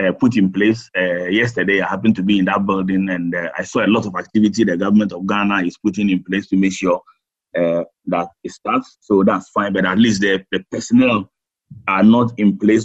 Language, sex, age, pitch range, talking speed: English, male, 30-49, 95-115 Hz, 230 wpm